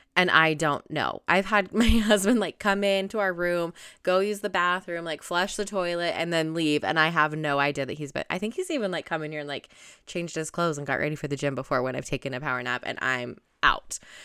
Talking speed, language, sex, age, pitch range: 255 wpm, English, female, 20-39, 155-205 Hz